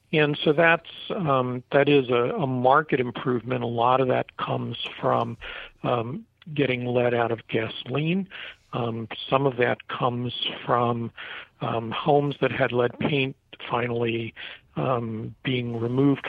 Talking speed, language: 140 wpm, English